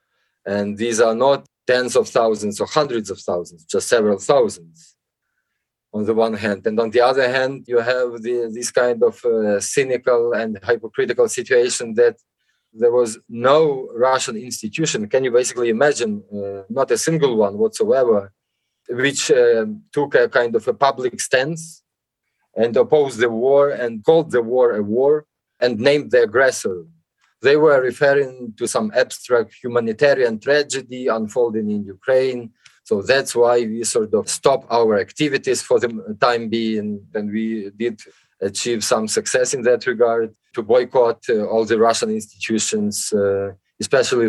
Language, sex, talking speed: English, male, 155 wpm